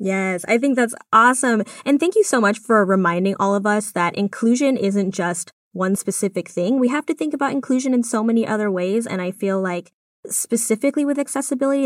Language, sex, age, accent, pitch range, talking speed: English, female, 10-29, American, 185-250 Hz, 200 wpm